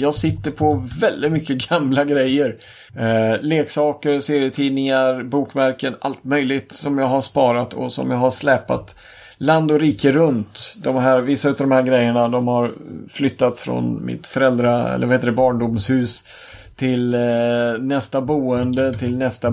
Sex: male